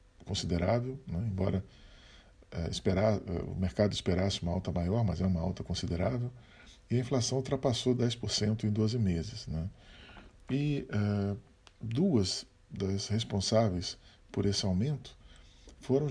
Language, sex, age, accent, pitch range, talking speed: Portuguese, male, 40-59, Brazilian, 95-125 Hz, 130 wpm